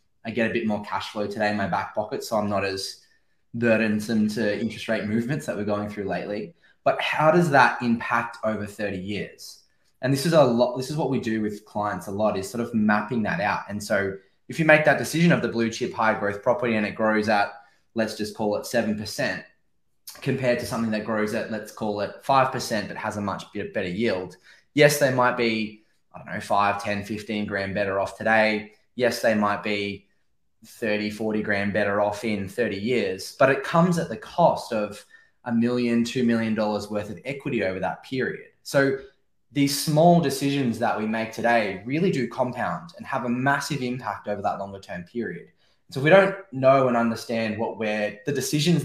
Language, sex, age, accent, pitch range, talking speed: English, male, 10-29, Australian, 105-130 Hz, 205 wpm